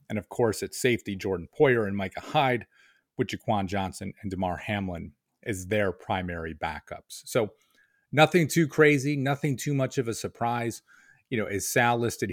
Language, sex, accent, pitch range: English, male, American, 95-120 Hz